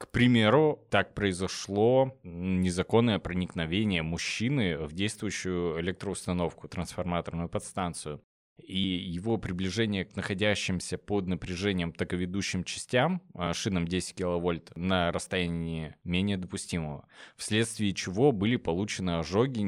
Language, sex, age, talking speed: Russian, male, 20-39, 100 wpm